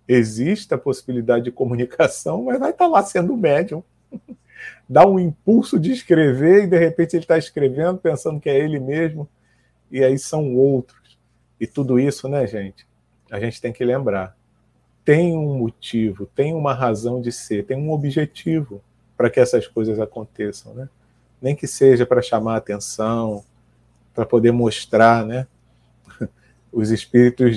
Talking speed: 150 wpm